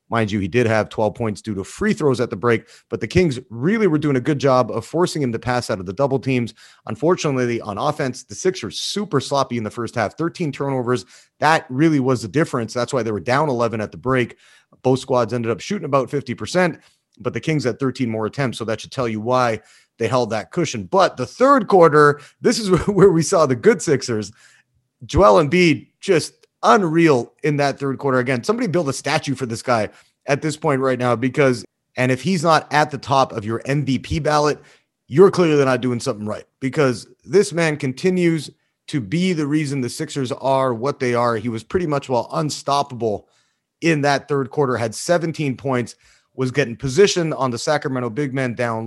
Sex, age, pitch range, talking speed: male, 30-49, 120-155 Hz, 210 wpm